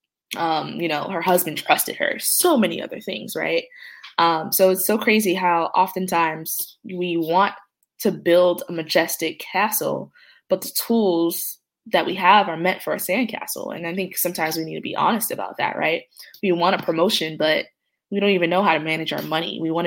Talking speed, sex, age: 195 wpm, female, 20-39